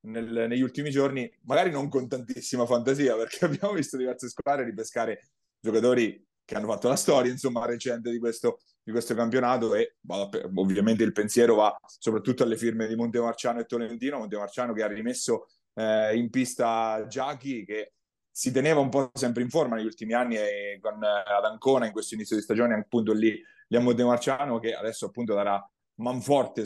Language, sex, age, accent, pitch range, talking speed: Italian, male, 30-49, native, 110-130 Hz, 180 wpm